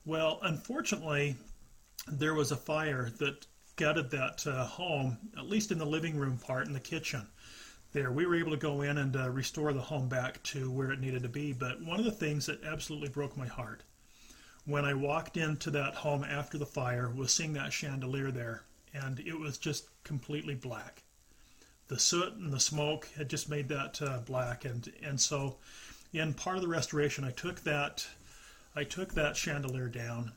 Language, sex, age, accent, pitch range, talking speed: English, male, 40-59, American, 130-155 Hz, 190 wpm